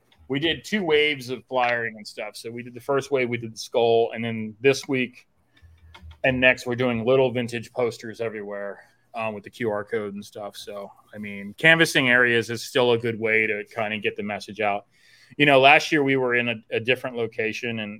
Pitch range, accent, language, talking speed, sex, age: 110-125 Hz, American, English, 220 wpm, male, 30-49